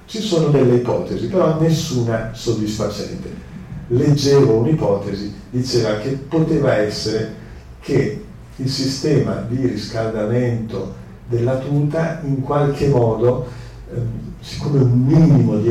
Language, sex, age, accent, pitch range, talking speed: Italian, male, 50-69, native, 105-135 Hz, 105 wpm